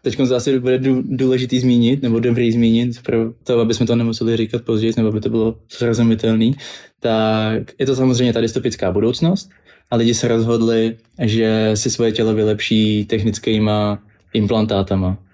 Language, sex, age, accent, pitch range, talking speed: Czech, male, 20-39, native, 110-120 Hz, 155 wpm